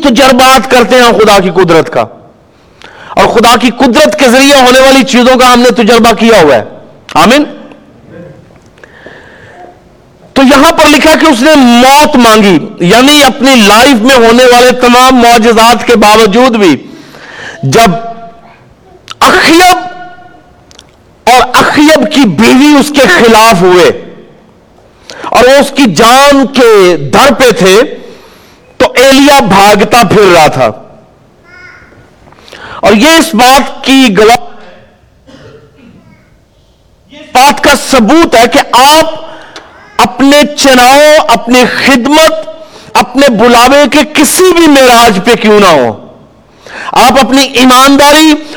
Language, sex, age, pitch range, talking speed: Urdu, male, 50-69, 235-295 Hz, 120 wpm